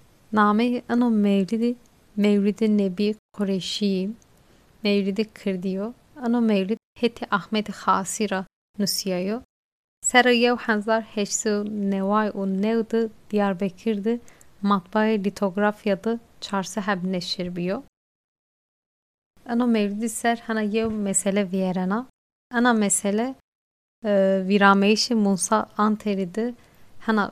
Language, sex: Turkish, female